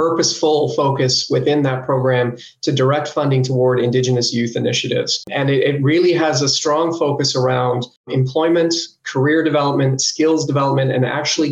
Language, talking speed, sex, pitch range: English, 145 wpm, male, 130-150 Hz